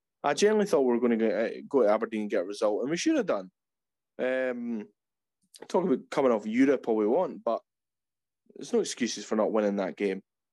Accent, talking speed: British, 210 wpm